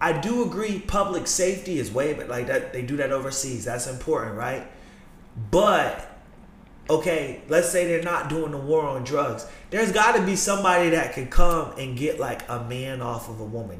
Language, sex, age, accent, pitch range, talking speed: English, male, 30-49, American, 145-200 Hz, 195 wpm